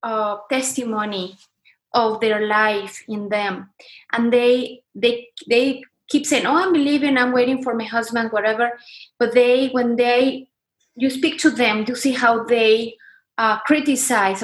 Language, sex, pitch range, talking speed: English, female, 215-255 Hz, 150 wpm